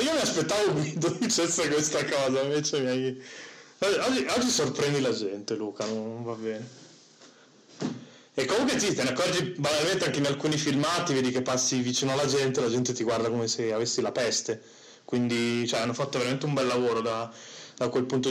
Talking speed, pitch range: 190 wpm, 120-135 Hz